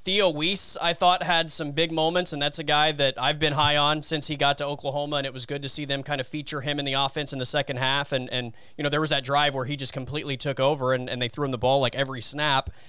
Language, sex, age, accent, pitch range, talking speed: English, male, 30-49, American, 135-175 Hz, 300 wpm